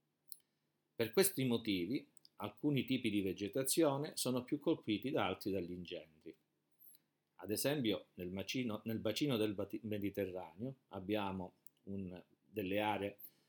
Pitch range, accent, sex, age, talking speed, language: 95-115 Hz, native, male, 50-69, 100 wpm, Italian